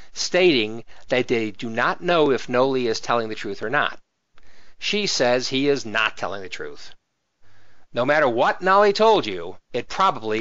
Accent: American